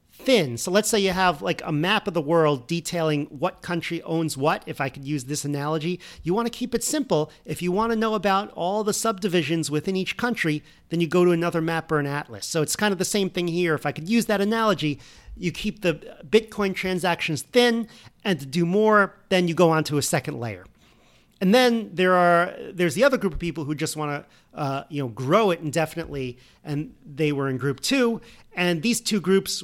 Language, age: English, 40-59